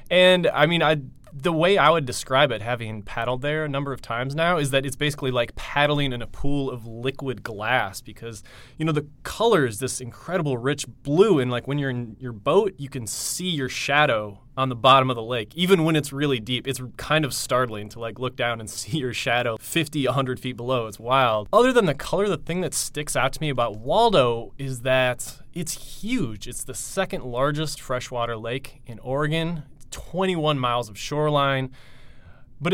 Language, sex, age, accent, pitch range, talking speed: English, male, 20-39, American, 120-150 Hz, 205 wpm